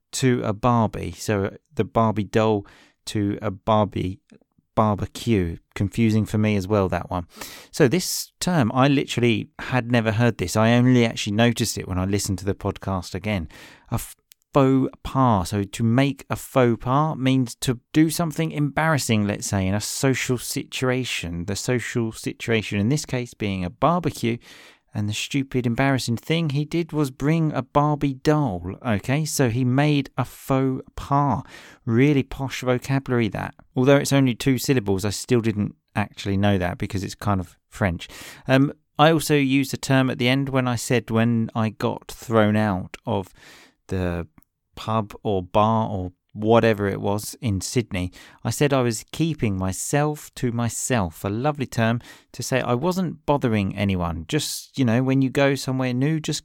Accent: British